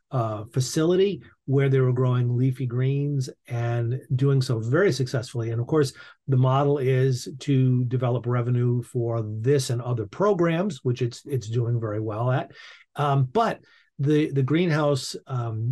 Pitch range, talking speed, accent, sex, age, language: 125-145 Hz, 155 wpm, American, male, 40-59, English